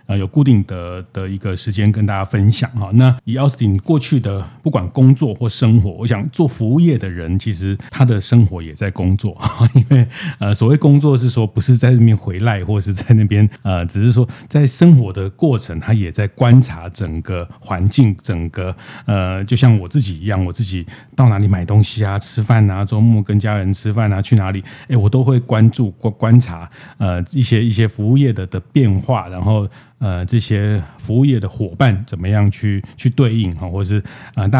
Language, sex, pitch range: Chinese, male, 100-125 Hz